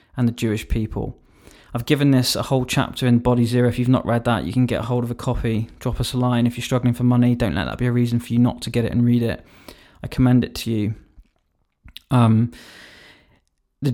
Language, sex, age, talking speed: English, male, 20-39, 245 wpm